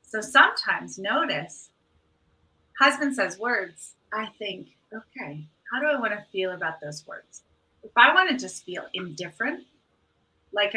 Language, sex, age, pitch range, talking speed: English, female, 30-49, 185-255 Hz, 145 wpm